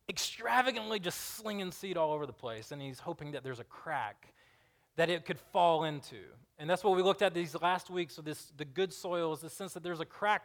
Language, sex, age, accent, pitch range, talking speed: English, male, 20-39, American, 125-170 Hz, 235 wpm